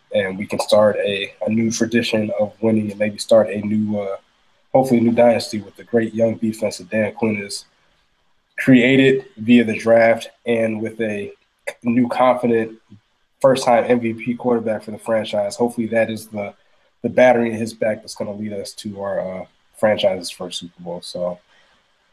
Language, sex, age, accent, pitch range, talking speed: English, male, 20-39, American, 105-115 Hz, 175 wpm